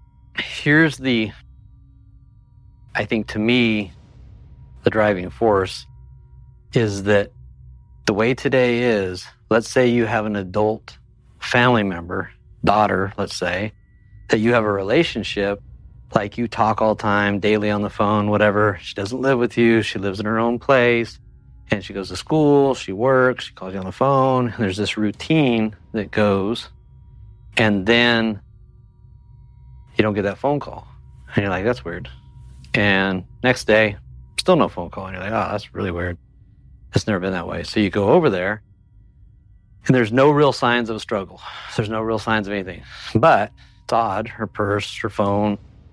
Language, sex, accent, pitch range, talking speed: English, male, American, 100-115 Hz, 170 wpm